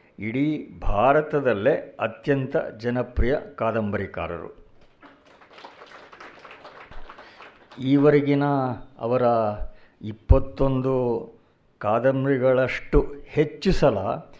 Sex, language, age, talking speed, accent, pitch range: male, Kannada, 60-79, 45 wpm, native, 115-145 Hz